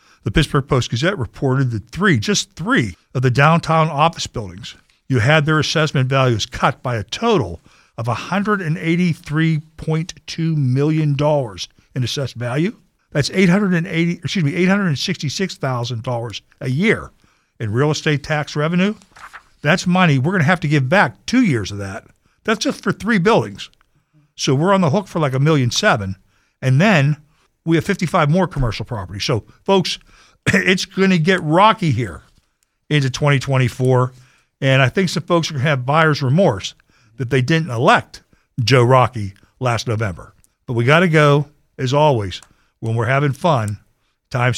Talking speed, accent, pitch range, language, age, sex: 165 wpm, American, 125-165 Hz, English, 60-79, male